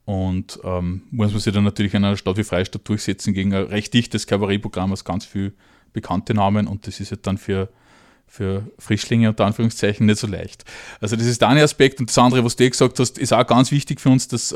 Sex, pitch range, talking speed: male, 105-130 Hz, 235 wpm